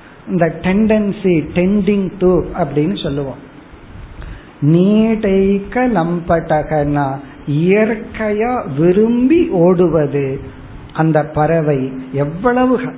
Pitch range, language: 145-195 Hz, Tamil